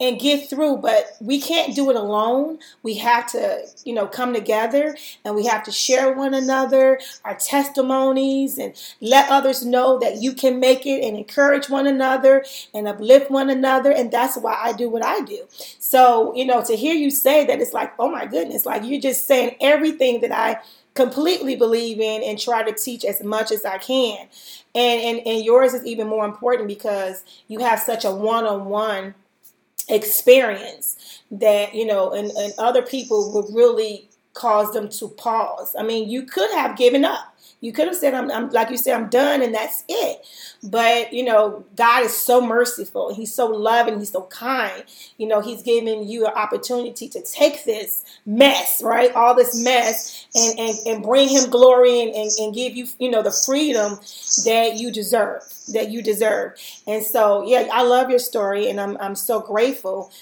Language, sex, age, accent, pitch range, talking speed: English, female, 30-49, American, 215-260 Hz, 190 wpm